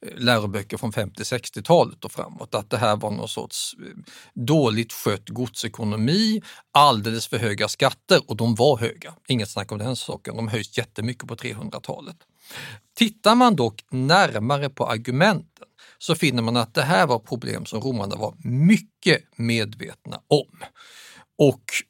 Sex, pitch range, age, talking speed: male, 115-165 Hz, 50-69, 150 wpm